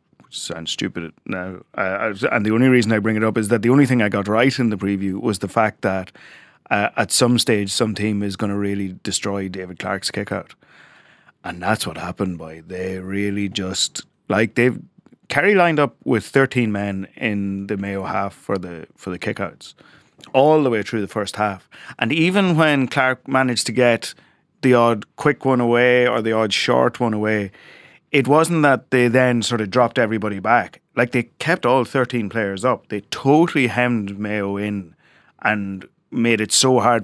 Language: English